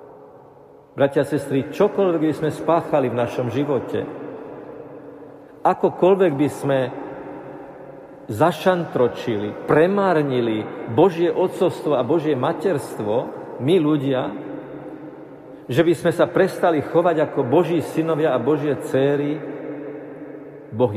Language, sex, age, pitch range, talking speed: Slovak, male, 50-69, 130-165 Hz, 100 wpm